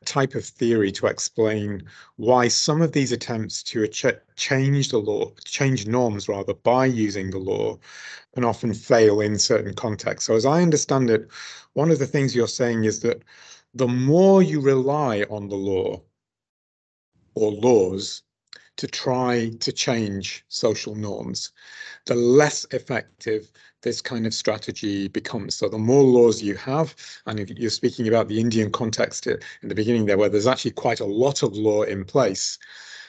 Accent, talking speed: British, 165 wpm